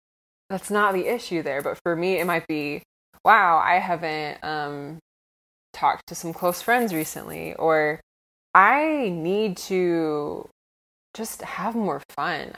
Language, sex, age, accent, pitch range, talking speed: English, female, 20-39, American, 150-180 Hz, 140 wpm